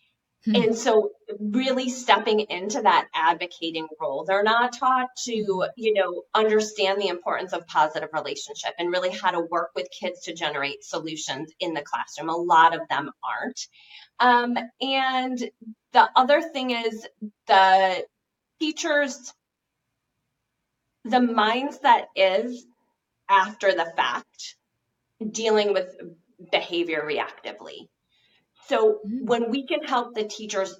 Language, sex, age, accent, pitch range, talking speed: English, female, 20-39, American, 180-240 Hz, 125 wpm